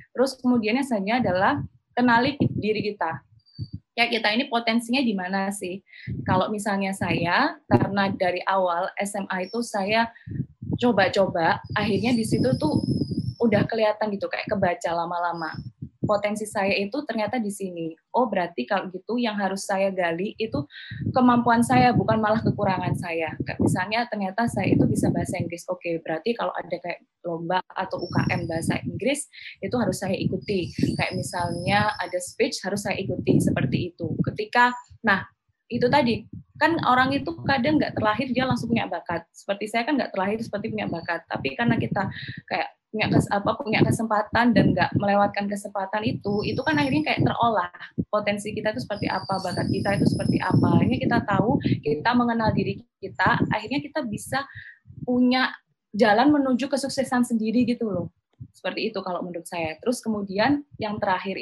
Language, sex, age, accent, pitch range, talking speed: English, female, 20-39, Indonesian, 180-235 Hz, 155 wpm